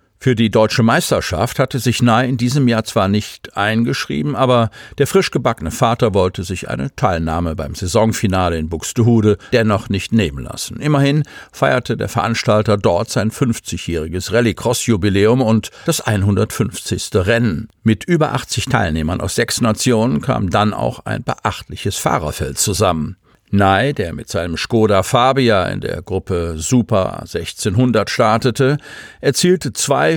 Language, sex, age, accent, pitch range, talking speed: German, male, 50-69, German, 100-125 Hz, 135 wpm